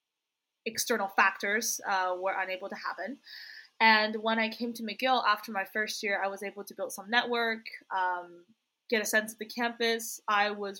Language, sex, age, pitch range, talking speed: English, female, 20-39, 190-230 Hz, 185 wpm